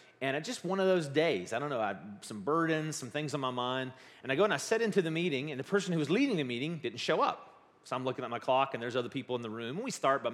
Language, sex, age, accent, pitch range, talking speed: English, male, 30-49, American, 125-190 Hz, 320 wpm